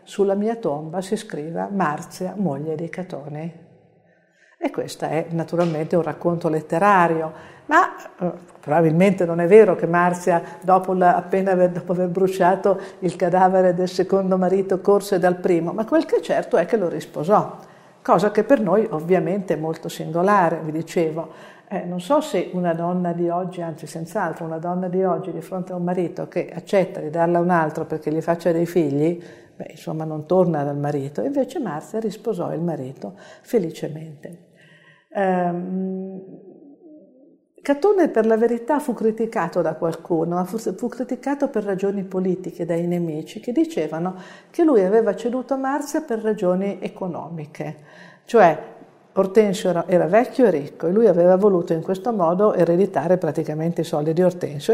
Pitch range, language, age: 165-200 Hz, Italian, 50-69